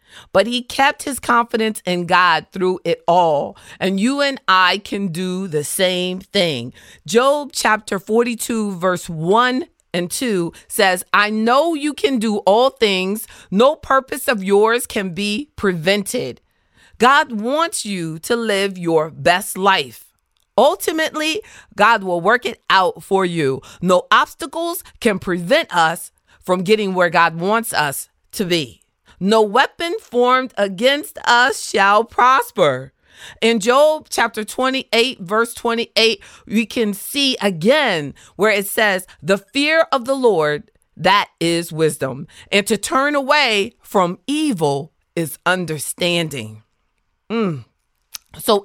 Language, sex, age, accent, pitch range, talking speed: English, female, 40-59, American, 180-255 Hz, 135 wpm